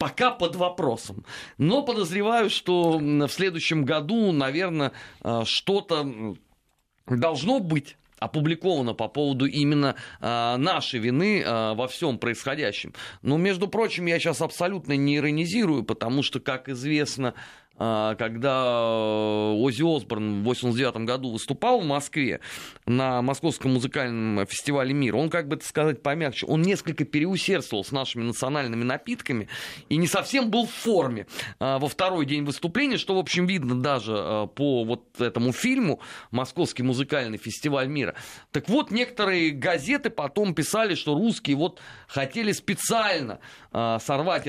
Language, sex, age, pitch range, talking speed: Russian, male, 30-49, 125-175 Hz, 130 wpm